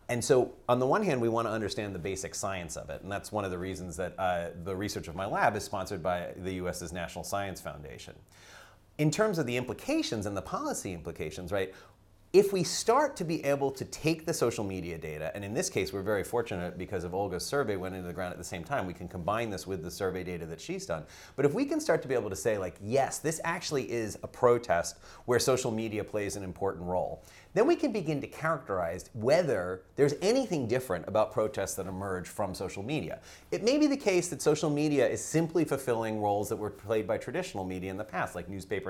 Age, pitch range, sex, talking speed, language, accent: 30-49, 95-135 Hz, male, 235 wpm, English, American